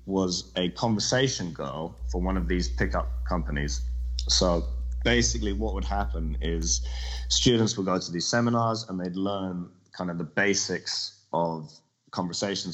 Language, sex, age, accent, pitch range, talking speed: English, male, 30-49, British, 80-95 Hz, 145 wpm